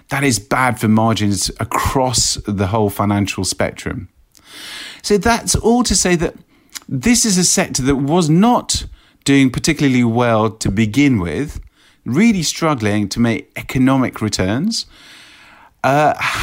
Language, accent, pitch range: English, British, 115-155 Hz